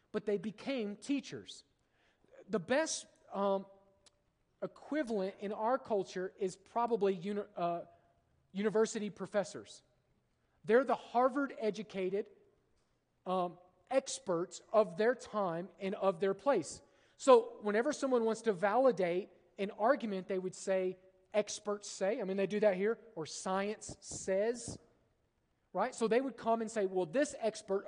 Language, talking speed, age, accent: English, 125 wpm, 40-59, American